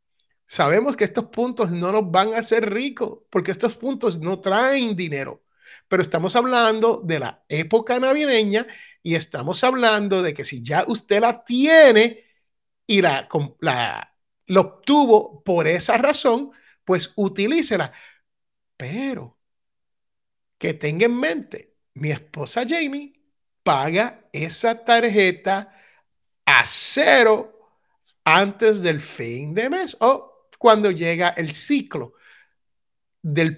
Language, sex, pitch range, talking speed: Spanish, male, 175-240 Hz, 115 wpm